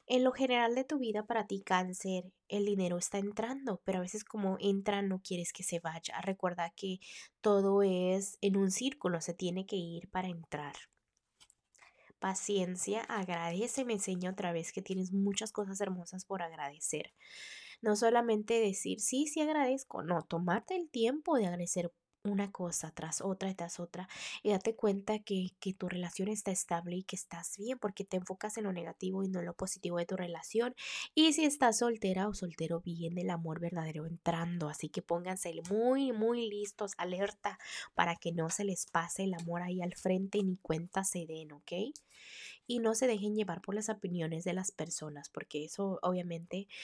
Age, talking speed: 20-39, 185 wpm